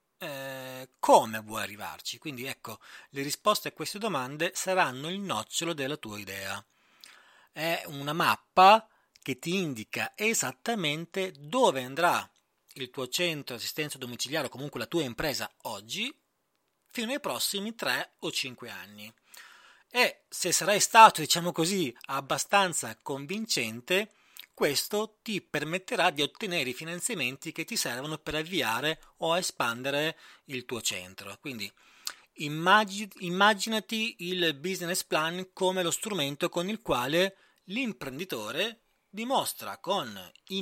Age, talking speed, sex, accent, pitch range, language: 30-49, 125 wpm, male, native, 130-190 Hz, Italian